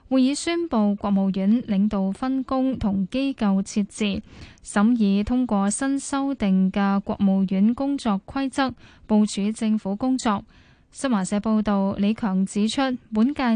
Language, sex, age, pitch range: Chinese, female, 10-29, 200-245 Hz